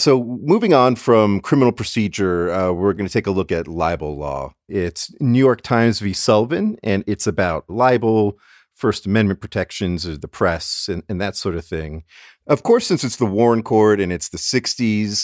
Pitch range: 90-115 Hz